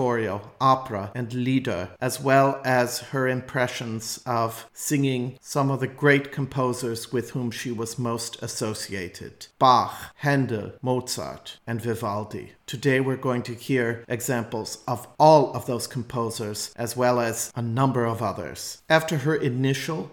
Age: 40-59